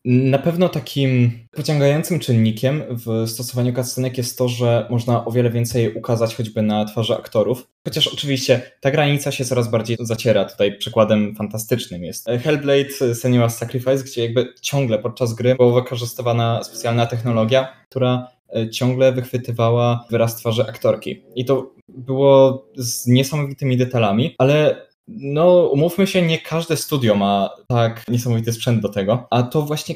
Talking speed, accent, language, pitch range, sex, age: 145 wpm, native, Polish, 115-140 Hz, male, 20-39